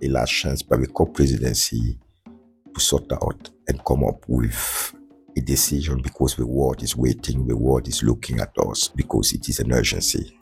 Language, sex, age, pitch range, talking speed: English, male, 50-69, 70-90 Hz, 175 wpm